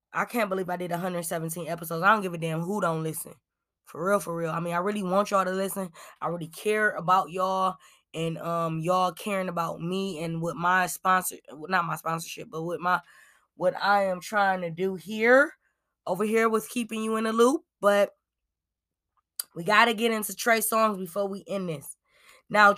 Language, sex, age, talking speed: English, female, 20-39, 200 wpm